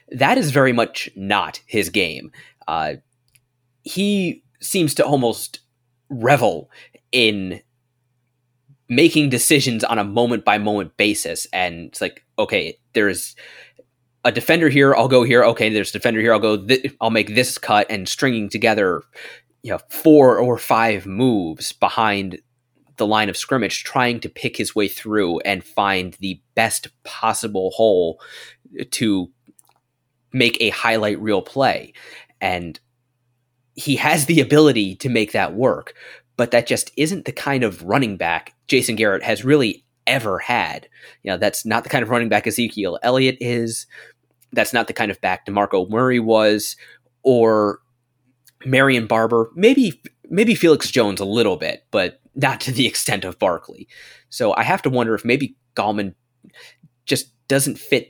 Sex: male